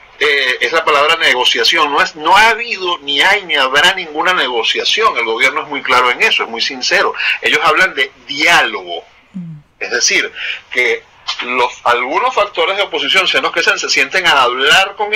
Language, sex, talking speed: Spanish, male, 180 wpm